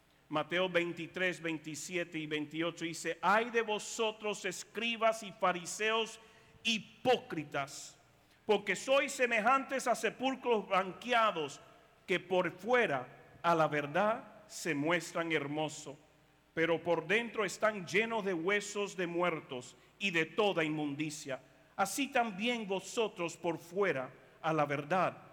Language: Spanish